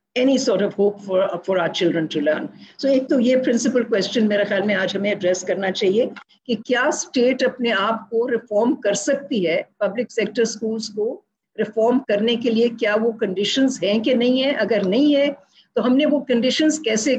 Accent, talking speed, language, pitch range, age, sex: Indian, 190 wpm, English, 220-275 Hz, 50-69, female